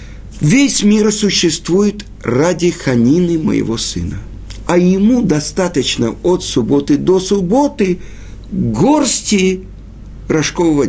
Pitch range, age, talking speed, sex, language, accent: 130-200 Hz, 50-69, 90 wpm, male, Russian, native